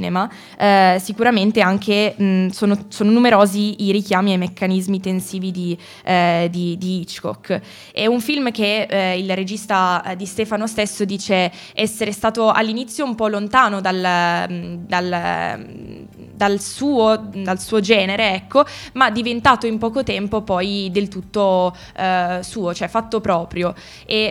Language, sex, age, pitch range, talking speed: Italian, female, 20-39, 185-215 Hz, 140 wpm